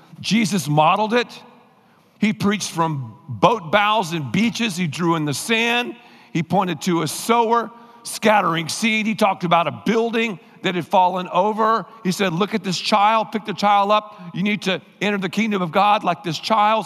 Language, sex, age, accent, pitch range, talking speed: English, male, 50-69, American, 180-230 Hz, 185 wpm